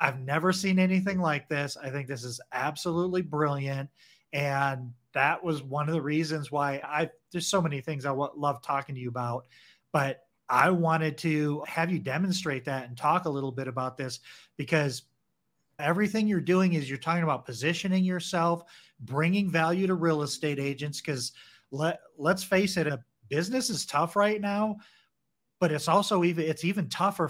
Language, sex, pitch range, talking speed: English, male, 140-185 Hz, 175 wpm